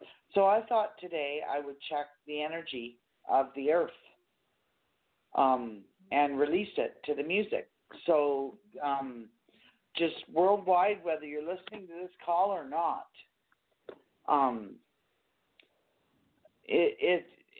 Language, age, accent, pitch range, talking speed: English, 50-69, American, 130-175 Hz, 115 wpm